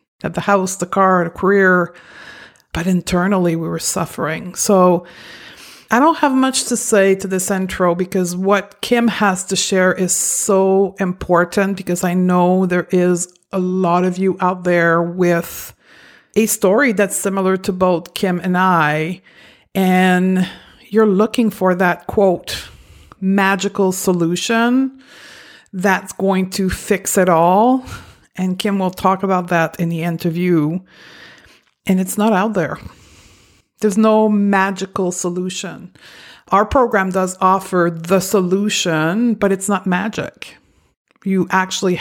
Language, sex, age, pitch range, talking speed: English, female, 50-69, 180-200 Hz, 135 wpm